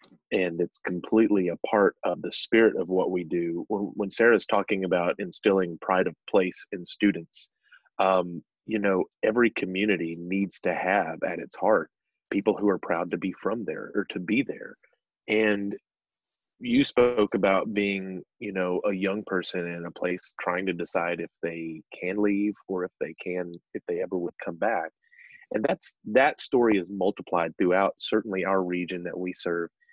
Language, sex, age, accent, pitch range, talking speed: English, male, 30-49, American, 90-105 Hz, 175 wpm